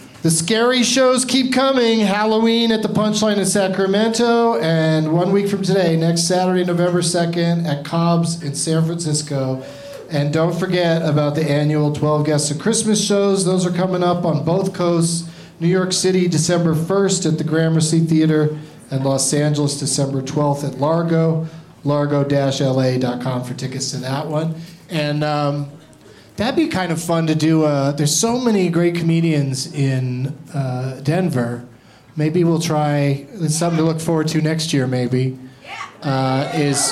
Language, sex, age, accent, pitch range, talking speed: English, male, 40-59, American, 140-175 Hz, 160 wpm